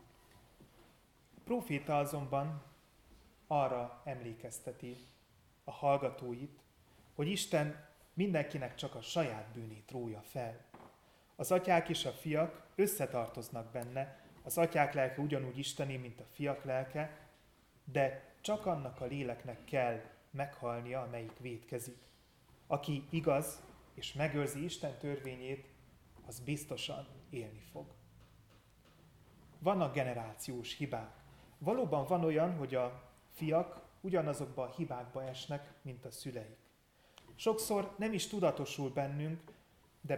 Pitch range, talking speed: 125-155 Hz, 110 wpm